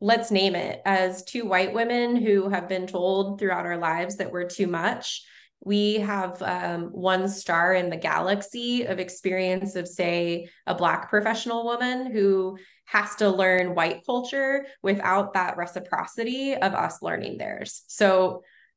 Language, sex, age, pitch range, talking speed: English, female, 20-39, 185-225 Hz, 155 wpm